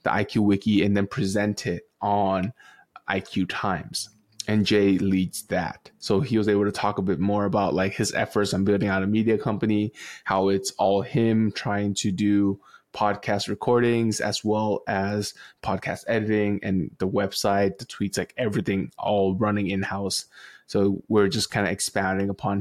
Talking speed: 170 wpm